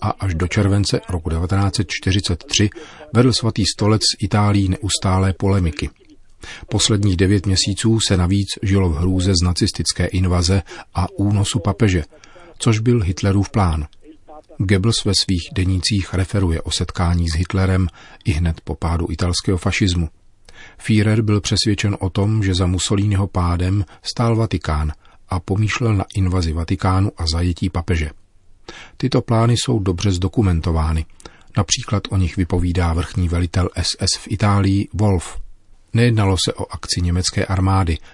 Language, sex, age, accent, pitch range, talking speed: Czech, male, 40-59, native, 90-105 Hz, 135 wpm